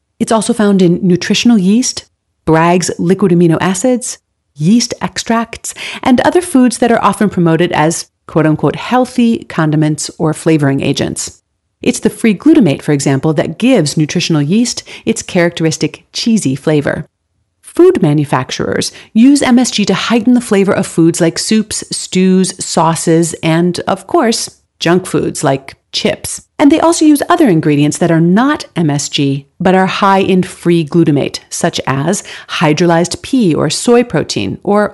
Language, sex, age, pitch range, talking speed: English, female, 40-59, 160-230 Hz, 145 wpm